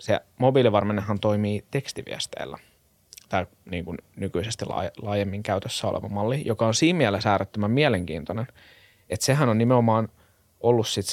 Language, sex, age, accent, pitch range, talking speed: Finnish, male, 20-39, native, 95-115 Hz, 130 wpm